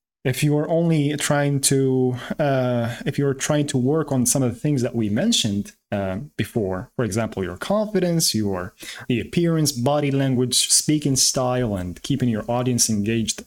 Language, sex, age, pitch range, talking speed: English, male, 30-49, 125-160 Hz, 170 wpm